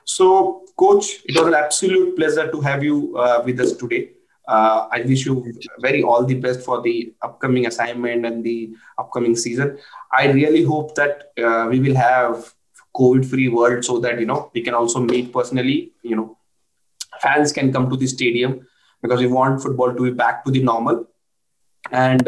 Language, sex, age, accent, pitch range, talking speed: English, male, 20-39, Indian, 125-150 Hz, 185 wpm